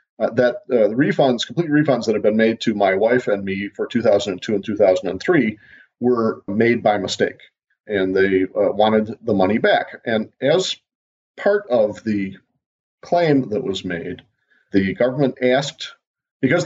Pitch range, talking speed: 95-125 Hz, 160 wpm